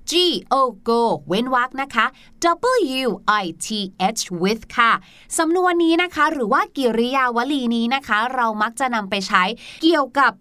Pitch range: 230-330 Hz